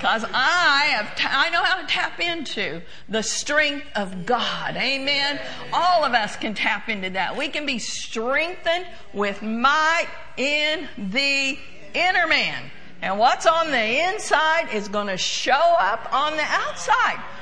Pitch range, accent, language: 245-330 Hz, American, English